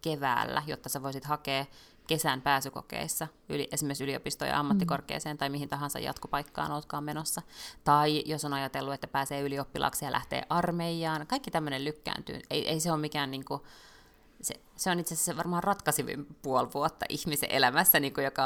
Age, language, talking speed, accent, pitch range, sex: 20-39, Finnish, 160 wpm, native, 145-170 Hz, female